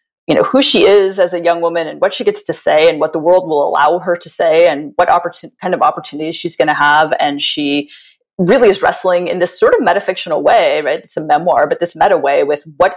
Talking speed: 255 wpm